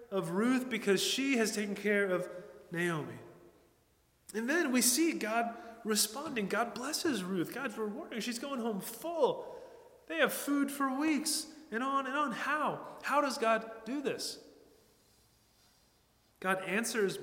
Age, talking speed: 30-49, 145 wpm